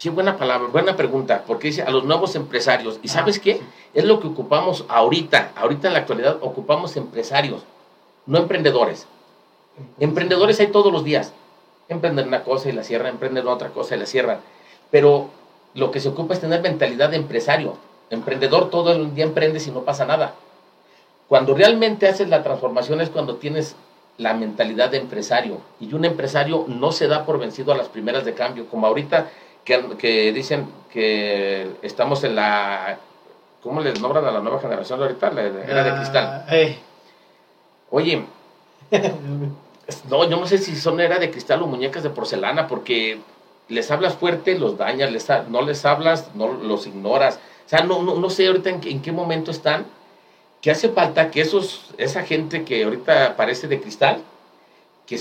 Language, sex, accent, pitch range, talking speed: Spanish, male, Mexican, 130-175 Hz, 175 wpm